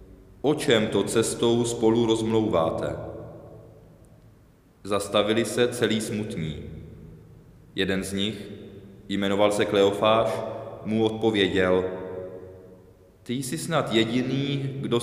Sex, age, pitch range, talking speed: male, 20-39, 100-120 Hz, 90 wpm